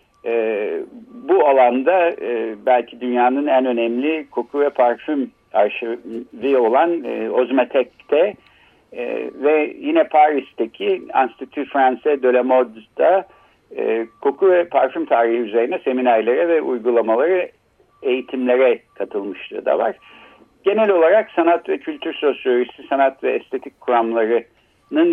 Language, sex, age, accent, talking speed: Turkish, male, 60-79, native, 110 wpm